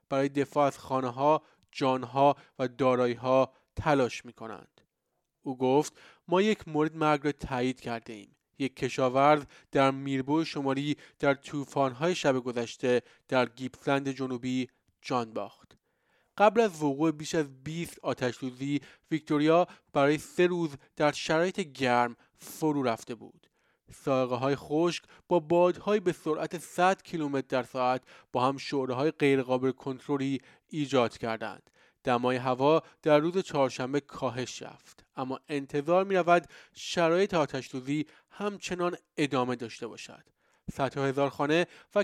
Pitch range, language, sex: 130-160 Hz, Persian, male